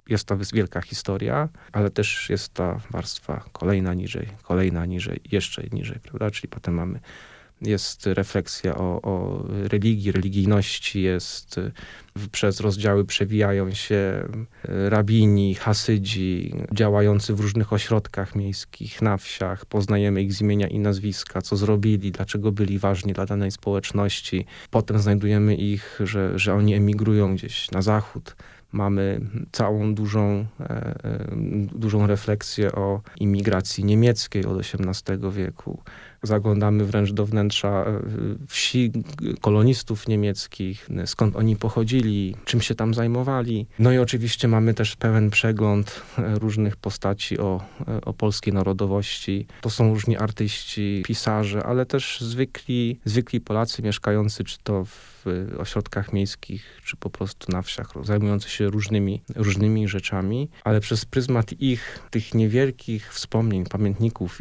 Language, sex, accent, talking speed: Polish, male, native, 125 wpm